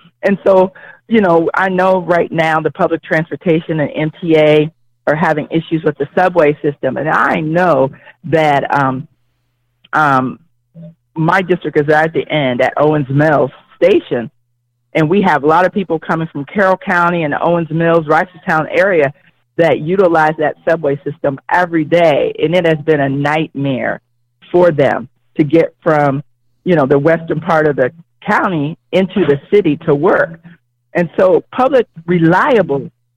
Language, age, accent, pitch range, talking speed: English, 40-59, American, 140-180 Hz, 160 wpm